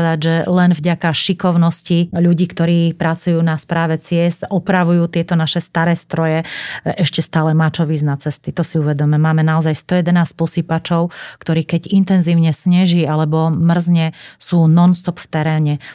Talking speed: 145 wpm